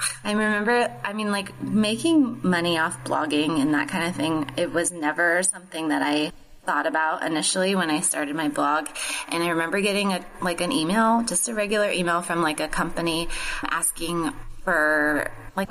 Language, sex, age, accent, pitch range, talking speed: English, female, 20-39, American, 170-195 Hz, 180 wpm